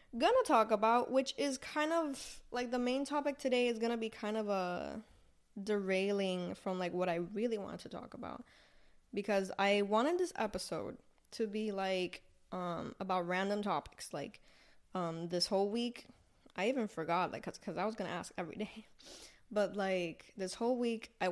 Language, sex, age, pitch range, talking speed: Spanish, female, 10-29, 185-235 Hz, 175 wpm